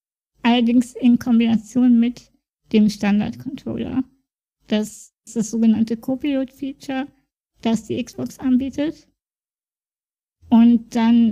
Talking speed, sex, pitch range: 95 wpm, female, 225-245 Hz